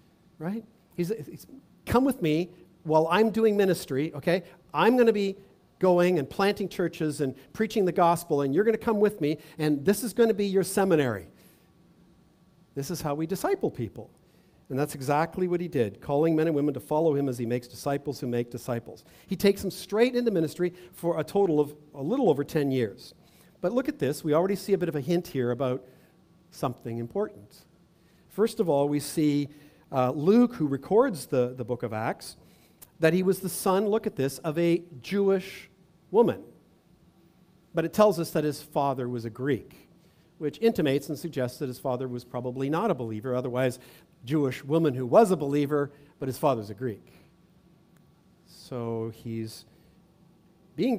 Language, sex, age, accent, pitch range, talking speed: English, male, 50-69, American, 140-185 Hz, 185 wpm